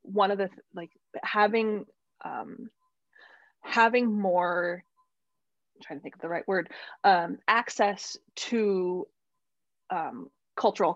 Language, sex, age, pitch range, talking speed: English, female, 20-39, 175-230 Hz, 115 wpm